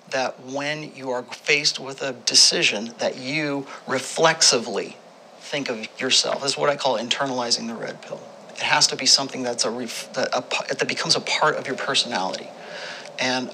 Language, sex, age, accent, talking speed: English, male, 40-59, American, 185 wpm